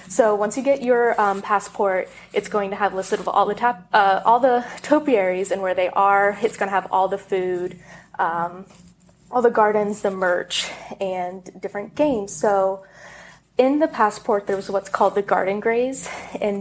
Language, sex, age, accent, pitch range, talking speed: English, female, 20-39, American, 190-225 Hz, 185 wpm